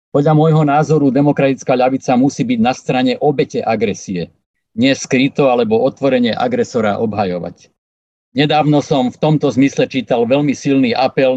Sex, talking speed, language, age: male, 135 wpm, Slovak, 50-69